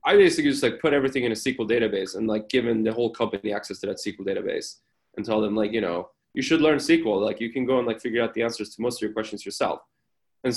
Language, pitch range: English, 110-130 Hz